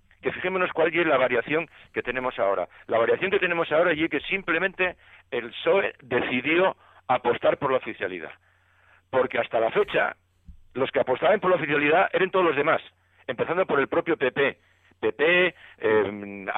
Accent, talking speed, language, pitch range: Spanish, 165 wpm, Spanish, 115-175 Hz